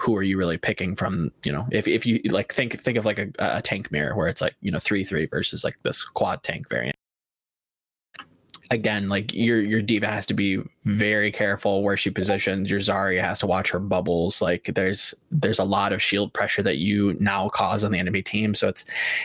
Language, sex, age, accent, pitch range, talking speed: English, male, 20-39, American, 100-110 Hz, 220 wpm